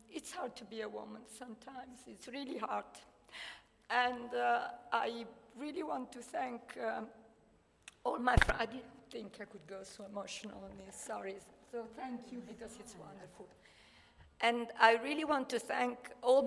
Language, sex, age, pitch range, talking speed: Italian, female, 50-69, 210-245 Hz, 165 wpm